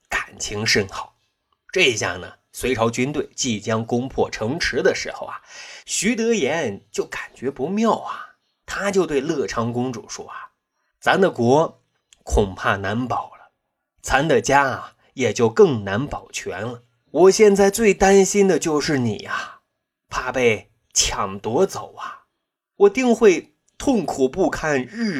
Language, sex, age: Chinese, male, 30-49